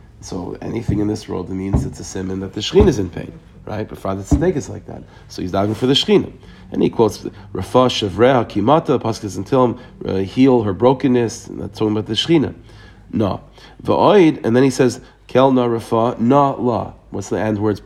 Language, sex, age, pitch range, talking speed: English, male, 40-59, 105-140 Hz, 205 wpm